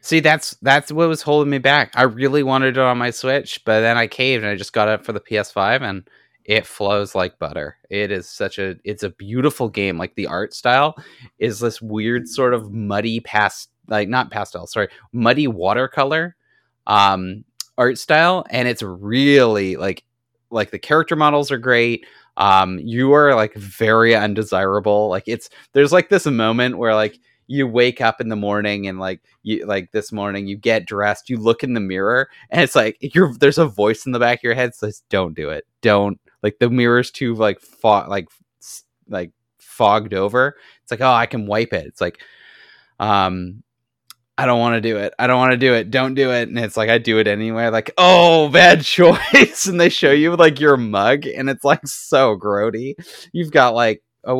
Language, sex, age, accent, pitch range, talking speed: English, male, 30-49, American, 105-135 Hz, 205 wpm